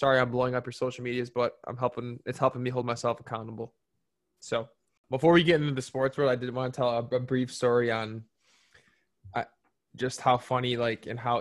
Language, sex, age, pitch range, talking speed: English, male, 10-29, 115-130 Hz, 215 wpm